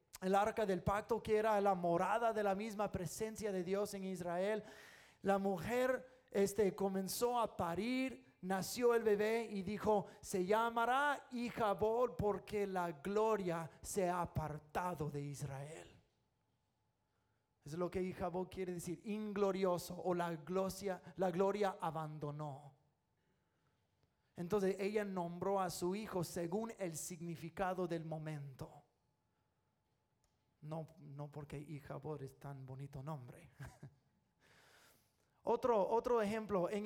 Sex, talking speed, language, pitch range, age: male, 120 wpm, English, 165-240 Hz, 30-49